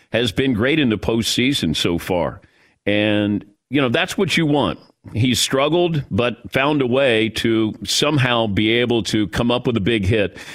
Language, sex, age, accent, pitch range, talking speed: English, male, 50-69, American, 95-130 Hz, 180 wpm